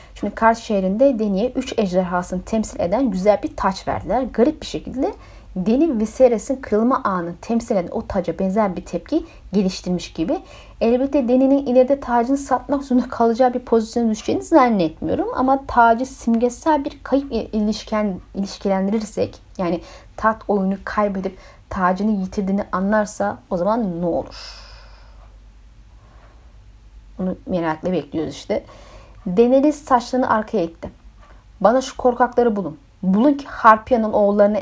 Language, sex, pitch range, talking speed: Turkish, female, 190-245 Hz, 130 wpm